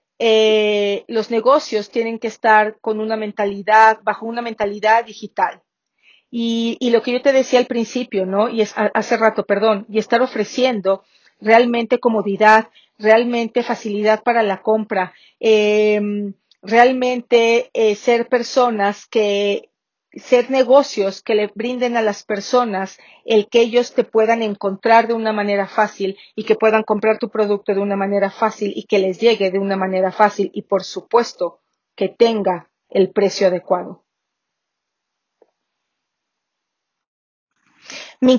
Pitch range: 205-240 Hz